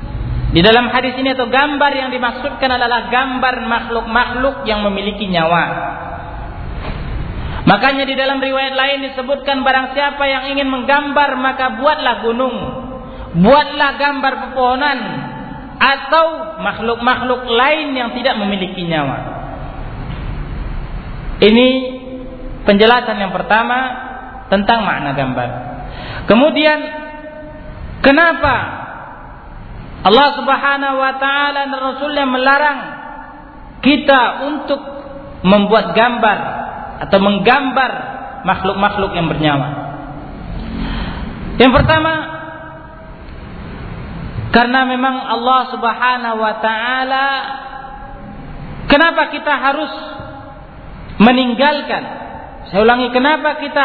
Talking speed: 90 wpm